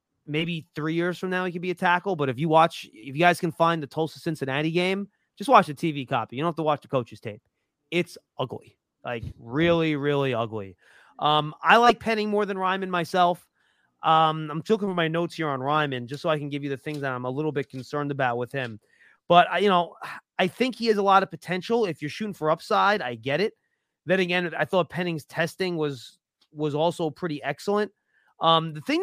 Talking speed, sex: 225 wpm, male